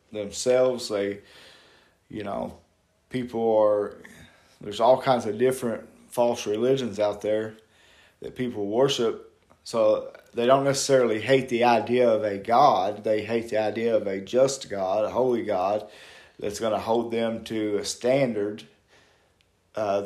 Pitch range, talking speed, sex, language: 105-125 Hz, 145 wpm, male, English